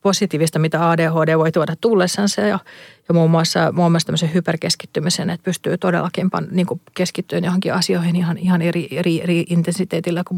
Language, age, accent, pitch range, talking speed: Finnish, 40-59, native, 160-180 Hz, 160 wpm